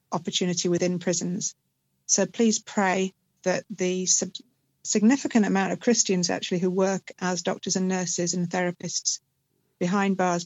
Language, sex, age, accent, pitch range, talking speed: English, female, 40-59, British, 175-190 Hz, 130 wpm